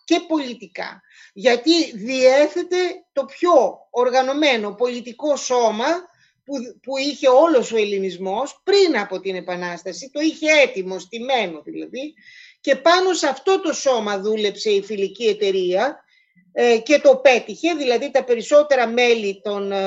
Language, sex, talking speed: Greek, female, 130 wpm